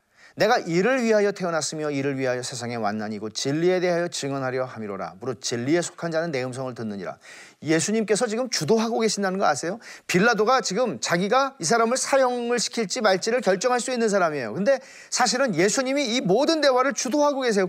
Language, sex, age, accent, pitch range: Korean, male, 40-59, native, 175-255 Hz